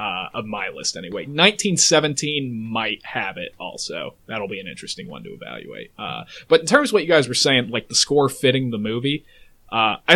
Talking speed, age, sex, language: 205 wpm, 20-39, male, English